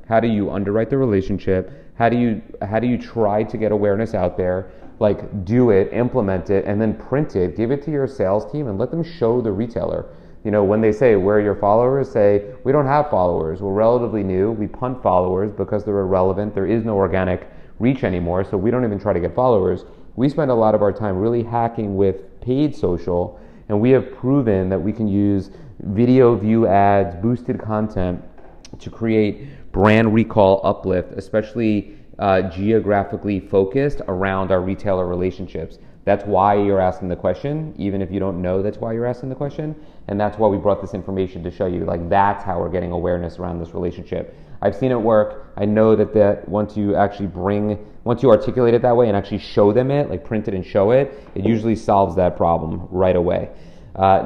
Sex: male